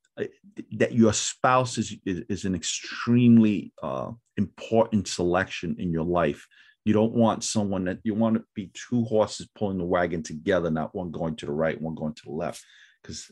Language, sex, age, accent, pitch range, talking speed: English, male, 40-59, American, 90-110 Hz, 185 wpm